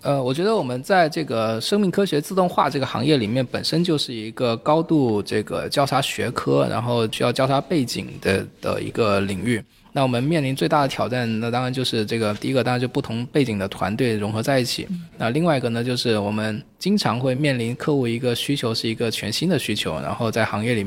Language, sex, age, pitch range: Chinese, male, 20-39, 110-135 Hz